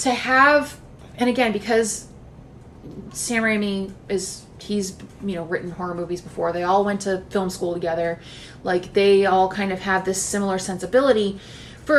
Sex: female